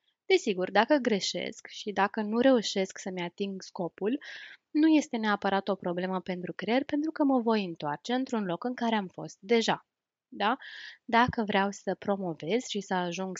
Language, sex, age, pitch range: Romanian, female, 20-39, 185-230 Hz